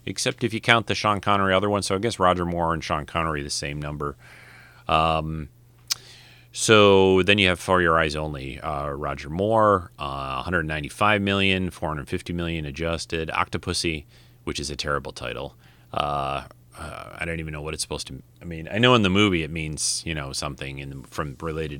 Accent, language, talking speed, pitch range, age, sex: American, English, 195 wpm, 75-100 Hz, 30-49, male